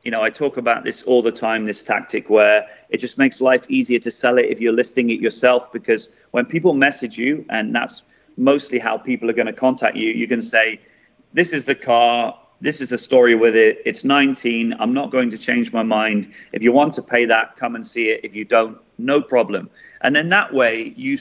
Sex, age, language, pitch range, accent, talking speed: male, 30-49, English, 115-140 Hz, British, 230 wpm